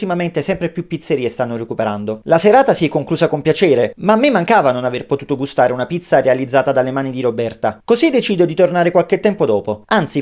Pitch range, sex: 135-190 Hz, male